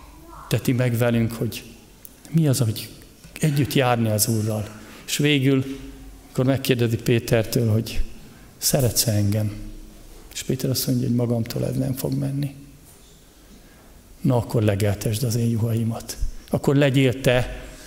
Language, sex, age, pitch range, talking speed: Hungarian, male, 50-69, 115-140 Hz, 125 wpm